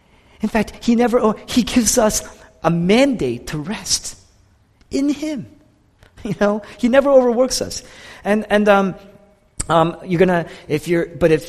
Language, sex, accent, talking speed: English, male, American, 150 wpm